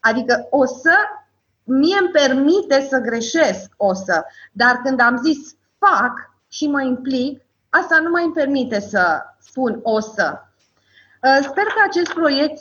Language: Romanian